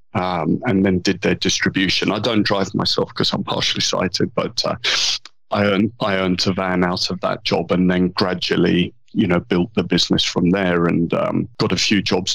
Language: English